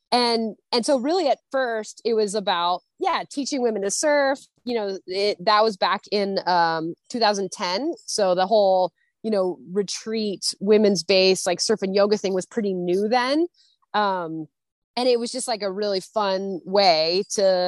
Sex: female